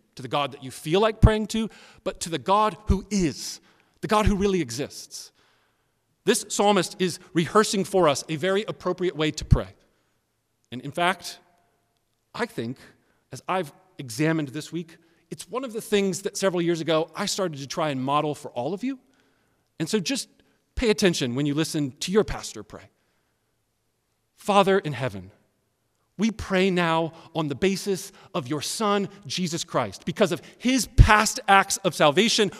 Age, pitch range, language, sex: 40-59, 140-200 Hz, English, male